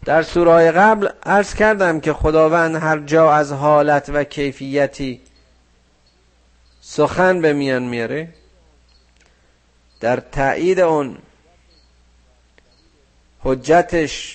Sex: male